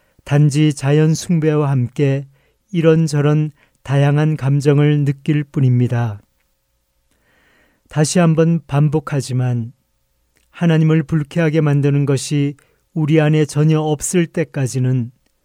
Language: Korean